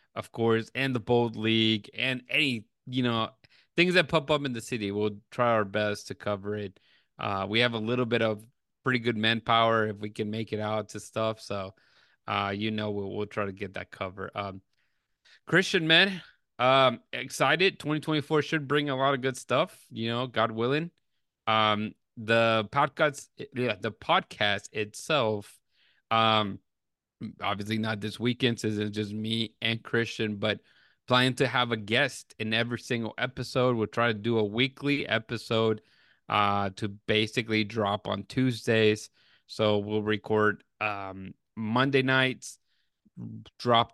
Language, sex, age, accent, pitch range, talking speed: English, male, 30-49, American, 105-125 Hz, 160 wpm